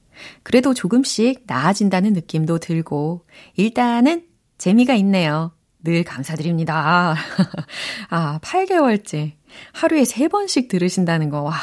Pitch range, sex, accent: 155-230 Hz, female, native